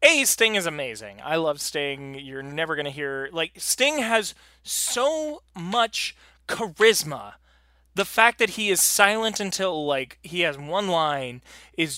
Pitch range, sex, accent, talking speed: 140-195 Hz, male, American, 155 wpm